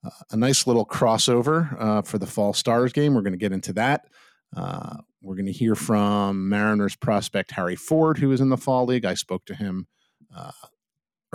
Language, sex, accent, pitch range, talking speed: English, male, American, 105-145 Hz, 200 wpm